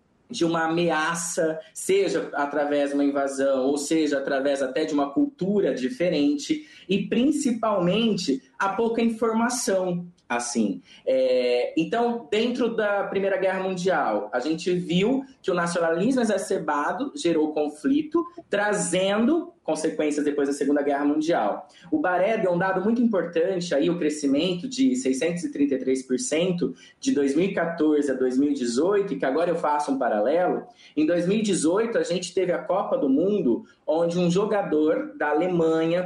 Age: 20-39